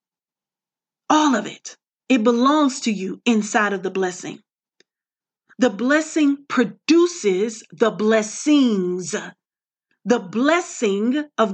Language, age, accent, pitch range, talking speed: English, 40-59, American, 220-295 Hz, 100 wpm